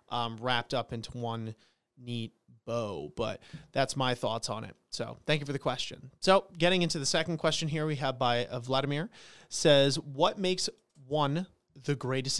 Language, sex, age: English, male, 30-49